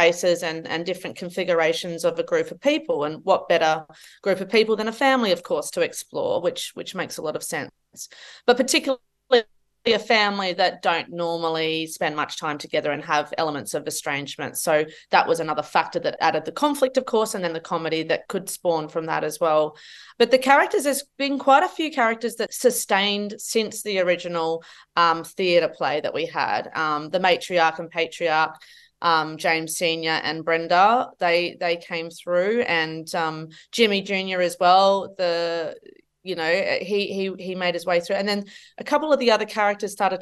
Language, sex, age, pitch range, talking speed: English, female, 30-49, 170-220 Hz, 190 wpm